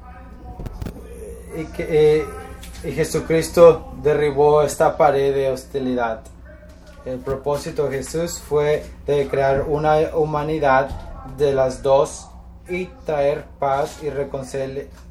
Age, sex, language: 20-39, male, English